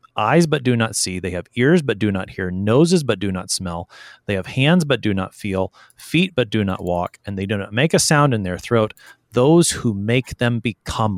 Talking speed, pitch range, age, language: 235 wpm, 105-150 Hz, 30-49, English